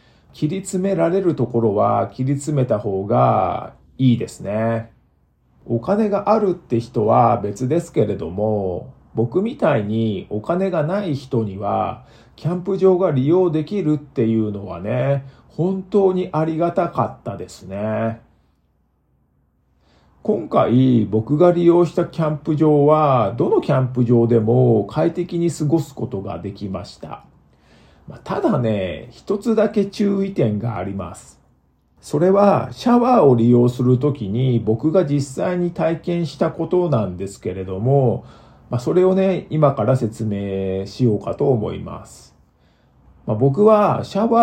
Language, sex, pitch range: Japanese, male, 110-170 Hz